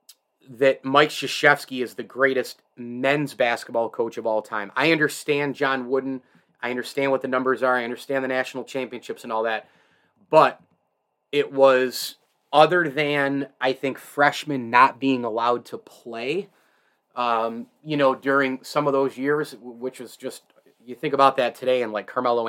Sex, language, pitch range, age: male, English, 120-145 Hz, 30-49